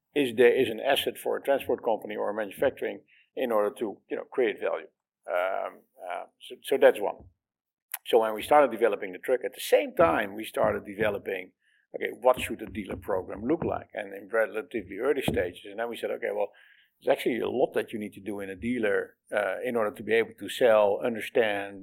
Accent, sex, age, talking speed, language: Dutch, male, 50-69, 215 wpm, English